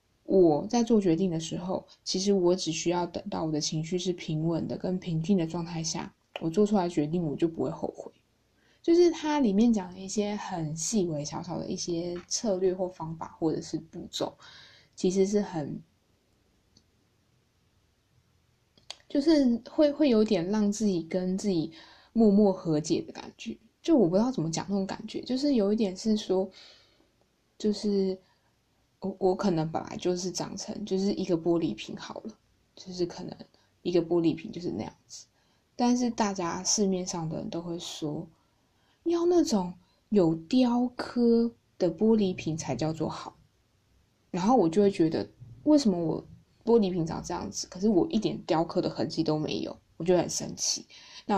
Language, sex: Chinese, female